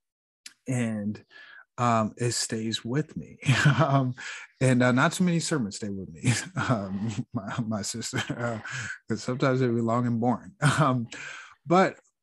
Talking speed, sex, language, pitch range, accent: 145 wpm, male, English, 100-120 Hz, American